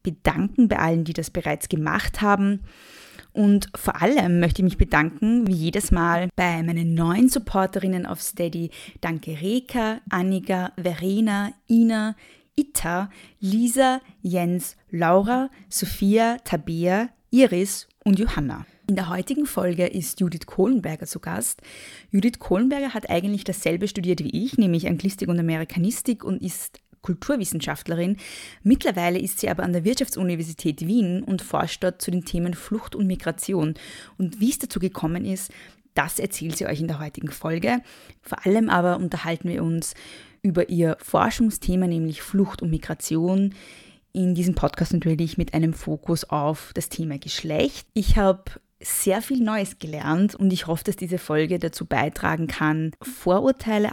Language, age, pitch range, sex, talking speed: German, 20-39, 170-205 Hz, female, 150 wpm